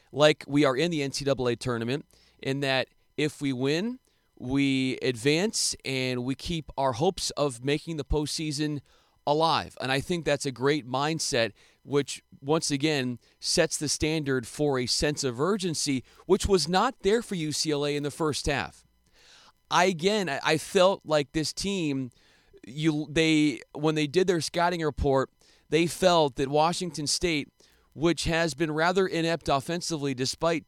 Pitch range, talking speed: 135-165 Hz, 155 wpm